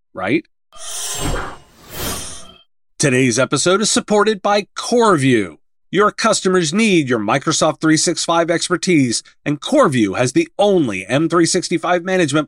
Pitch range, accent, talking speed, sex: 140-195 Hz, American, 100 wpm, male